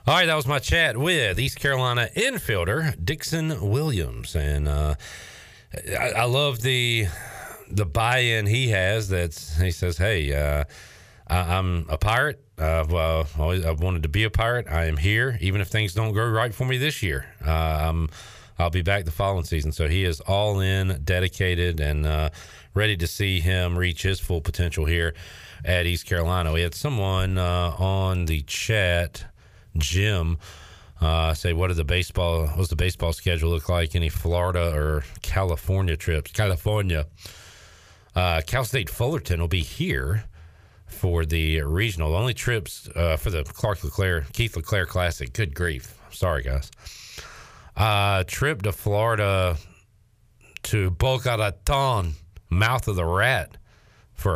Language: English